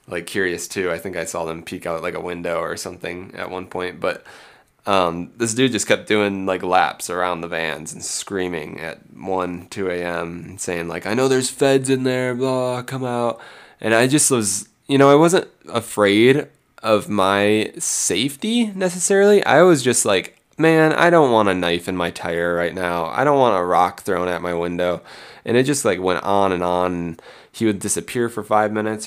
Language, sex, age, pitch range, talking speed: English, male, 20-39, 90-120 Hz, 205 wpm